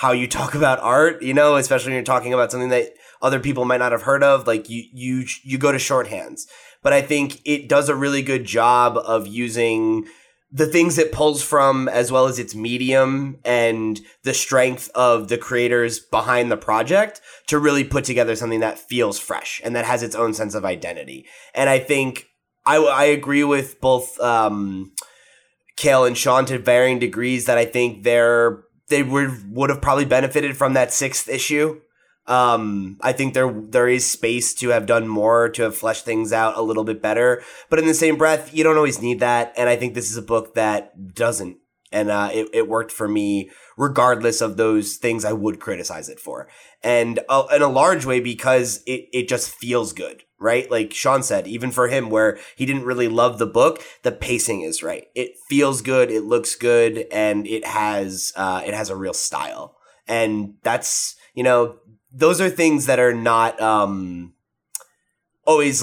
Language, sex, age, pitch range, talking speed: English, male, 20-39, 115-135 Hz, 195 wpm